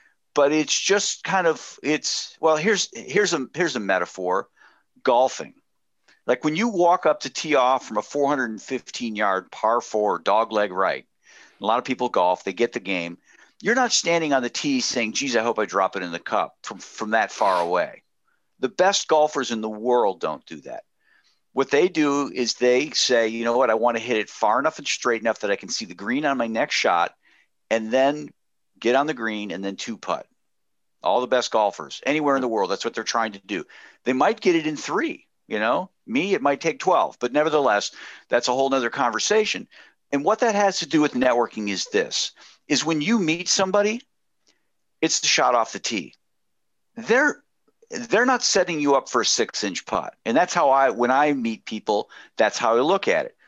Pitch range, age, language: 115-180 Hz, 50-69, English